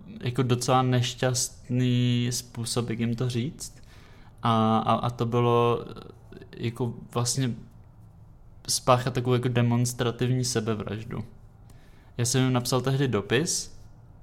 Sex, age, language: male, 20-39, Czech